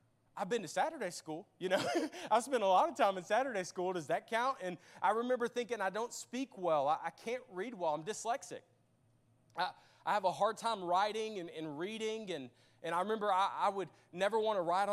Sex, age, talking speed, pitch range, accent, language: male, 30-49, 220 wpm, 180-245 Hz, American, English